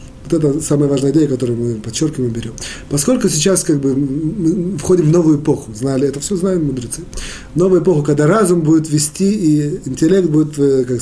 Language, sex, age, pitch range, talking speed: Russian, male, 20-39, 130-170 Hz, 180 wpm